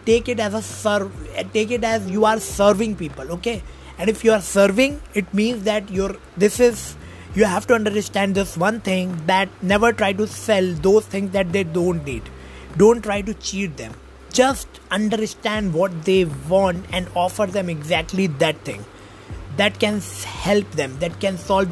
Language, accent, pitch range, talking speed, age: English, Indian, 165-215 Hz, 180 wpm, 20-39